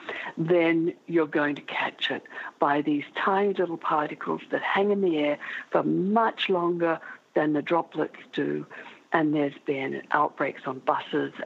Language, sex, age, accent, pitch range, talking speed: English, female, 60-79, British, 155-200 Hz, 150 wpm